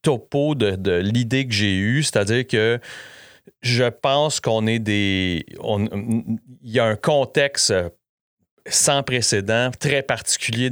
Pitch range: 95-125 Hz